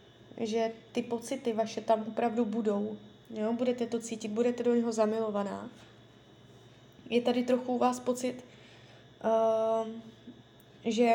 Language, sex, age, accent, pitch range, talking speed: Czech, female, 20-39, native, 225-250 Hz, 115 wpm